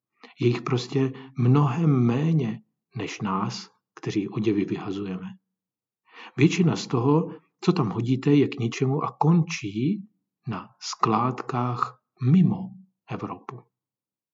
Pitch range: 115-160 Hz